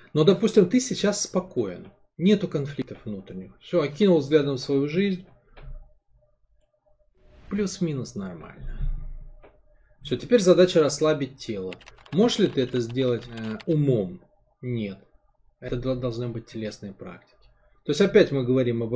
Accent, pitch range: native, 110-150 Hz